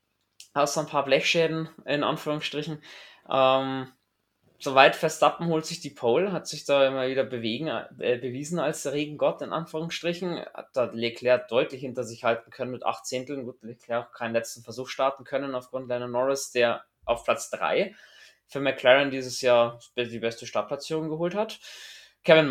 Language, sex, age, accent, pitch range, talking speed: German, male, 20-39, German, 125-160 Hz, 170 wpm